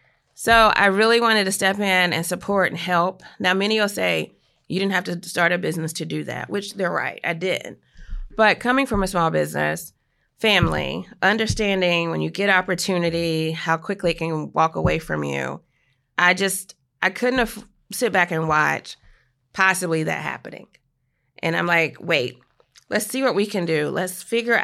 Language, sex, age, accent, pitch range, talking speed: English, female, 30-49, American, 160-205 Hz, 180 wpm